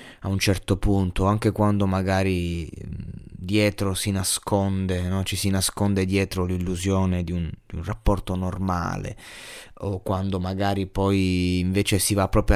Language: Italian